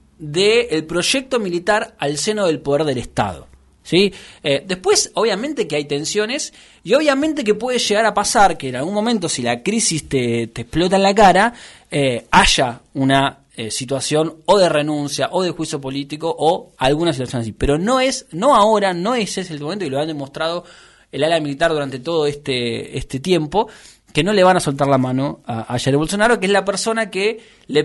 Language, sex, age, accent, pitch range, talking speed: Spanish, male, 20-39, Argentinian, 135-200 Hz, 205 wpm